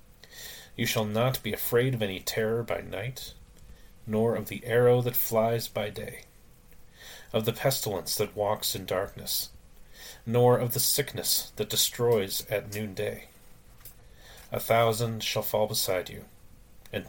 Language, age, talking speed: English, 30-49, 140 wpm